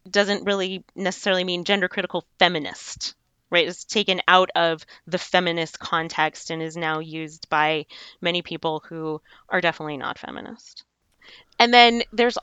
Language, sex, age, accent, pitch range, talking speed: English, female, 20-39, American, 165-195 Hz, 145 wpm